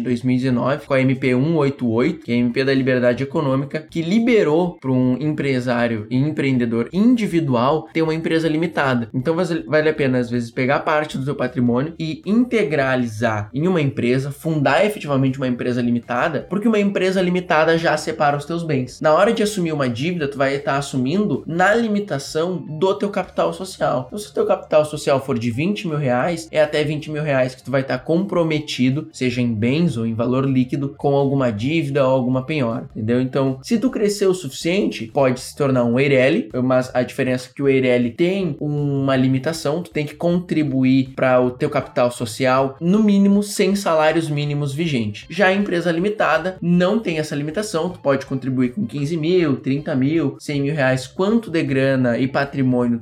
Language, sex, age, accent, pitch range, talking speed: Portuguese, male, 20-39, Brazilian, 130-165 Hz, 185 wpm